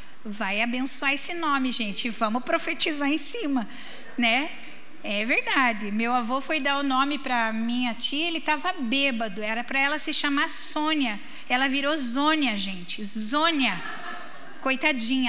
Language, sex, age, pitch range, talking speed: Portuguese, female, 10-29, 245-295 Hz, 145 wpm